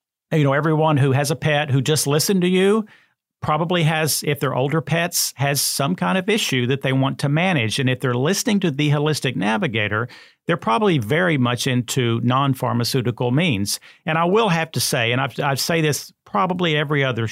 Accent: American